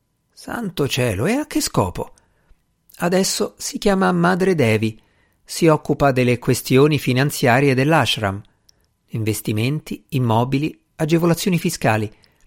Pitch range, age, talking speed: 110-170 Hz, 50-69, 100 wpm